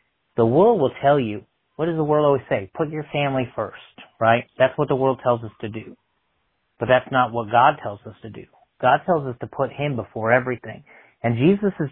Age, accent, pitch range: 30-49, American, 110-135 Hz